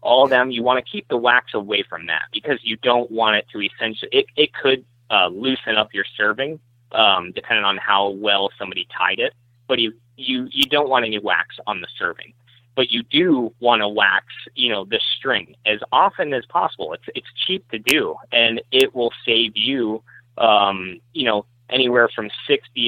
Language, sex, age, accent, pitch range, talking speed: English, male, 30-49, American, 115-135 Hz, 200 wpm